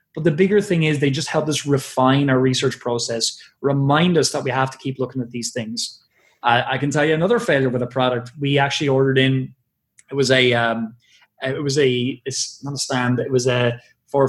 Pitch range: 125-155 Hz